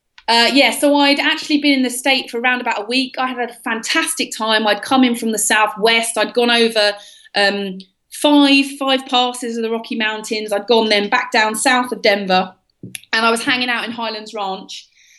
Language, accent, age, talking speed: English, British, 30-49, 210 wpm